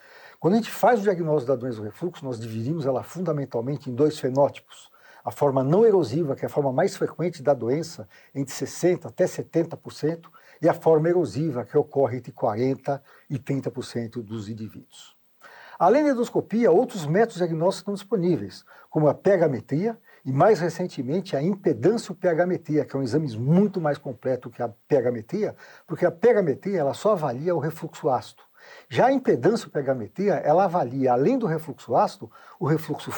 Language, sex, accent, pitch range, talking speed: Portuguese, male, Brazilian, 135-200 Hz, 170 wpm